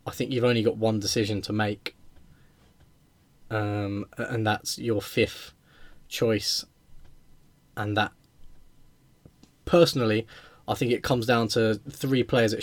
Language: English